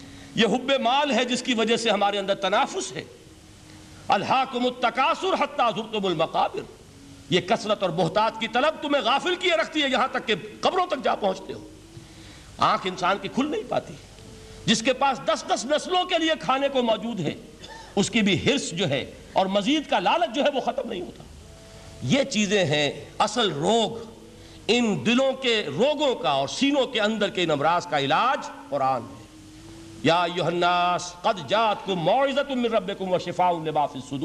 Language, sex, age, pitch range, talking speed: Urdu, male, 50-69, 175-275 Hz, 160 wpm